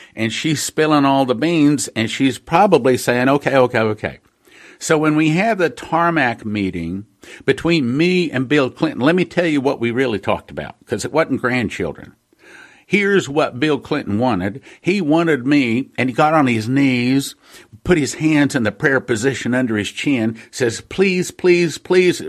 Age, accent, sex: 50-69, American, male